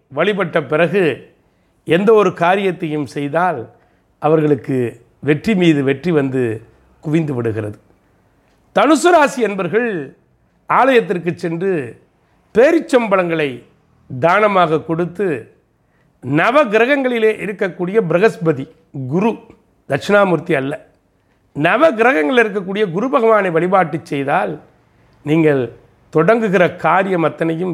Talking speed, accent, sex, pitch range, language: 80 wpm, native, male, 145-210 Hz, Tamil